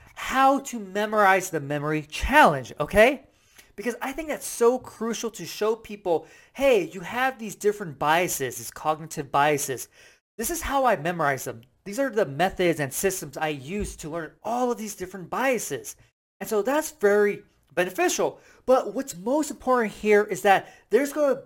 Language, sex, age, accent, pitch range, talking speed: English, male, 30-49, American, 155-235 Hz, 170 wpm